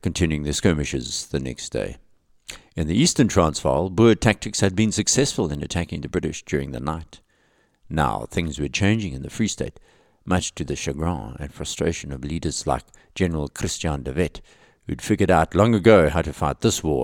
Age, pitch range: 60-79, 80-110 Hz